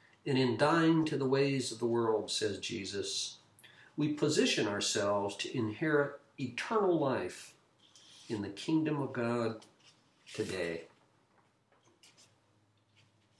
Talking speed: 110 wpm